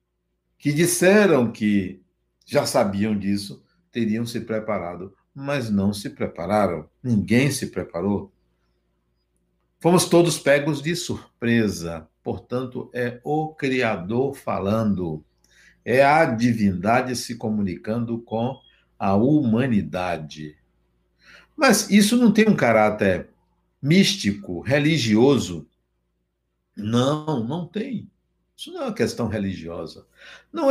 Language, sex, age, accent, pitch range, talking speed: Portuguese, male, 60-79, Brazilian, 85-135 Hz, 100 wpm